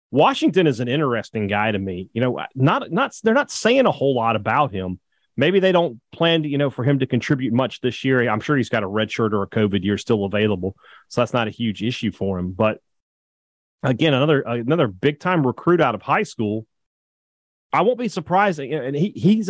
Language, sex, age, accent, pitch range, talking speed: English, male, 30-49, American, 110-155 Hz, 220 wpm